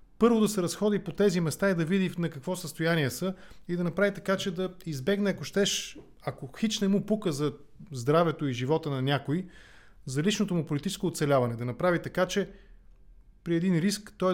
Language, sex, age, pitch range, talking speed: English, male, 30-49, 145-185 Hz, 195 wpm